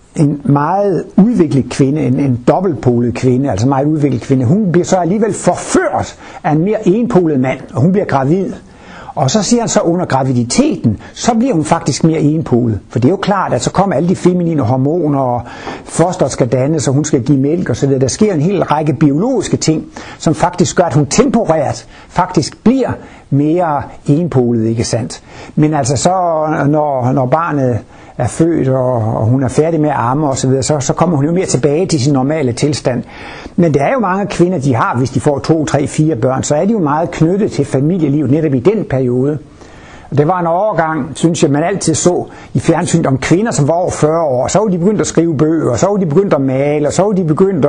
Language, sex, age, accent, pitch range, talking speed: Danish, male, 60-79, native, 130-170 Hz, 215 wpm